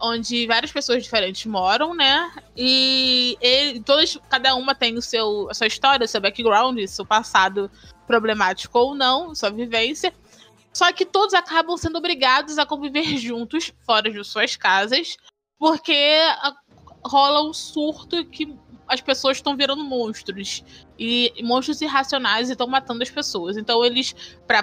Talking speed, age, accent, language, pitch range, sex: 145 wpm, 20-39, Brazilian, Portuguese, 235-315 Hz, female